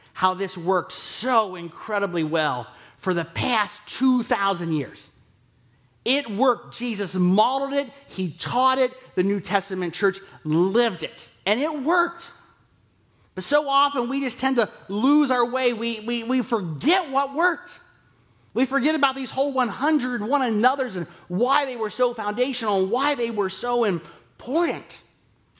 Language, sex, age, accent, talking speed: English, male, 30-49, American, 150 wpm